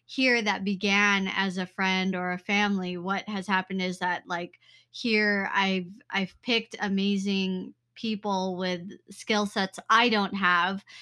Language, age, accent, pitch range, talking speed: English, 20-39, American, 185-205 Hz, 145 wpm